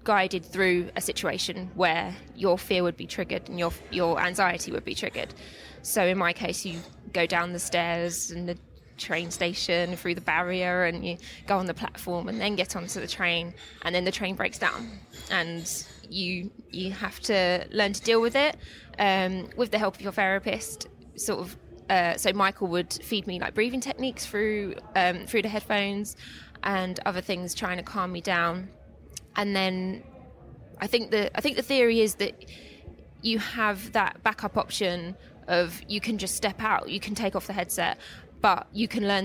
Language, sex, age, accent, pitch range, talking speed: English, female, 20-39, British, 175-205 Hz, 190 wpm